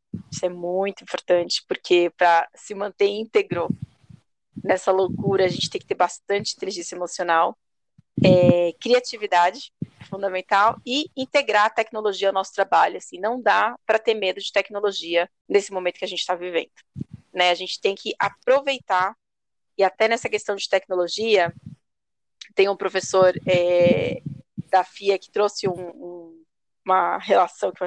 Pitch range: 185-220 Hz